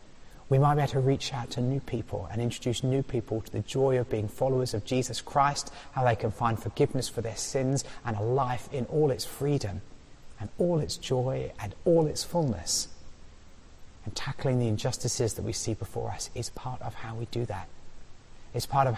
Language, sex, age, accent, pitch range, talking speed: English, male, 30-49, British, 100-130 Hz, 205 wpm